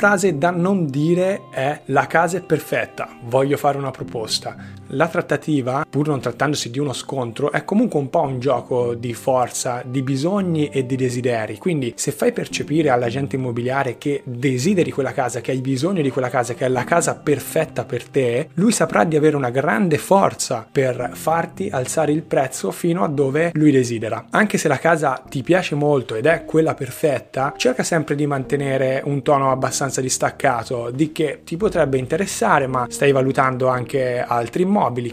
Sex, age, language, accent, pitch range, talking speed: male, 30-49, Italian, native, 130-165 Hz, 175 wpm